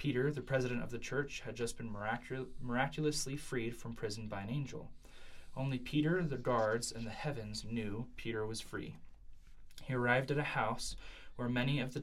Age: 20-39